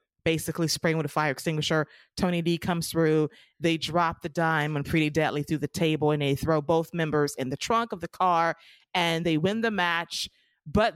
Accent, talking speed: American, 205 wpm